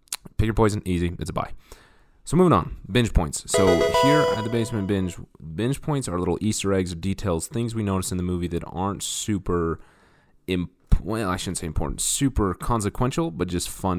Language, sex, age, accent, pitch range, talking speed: English, male, 30-49, American, 80-105 Hz, 195 wpm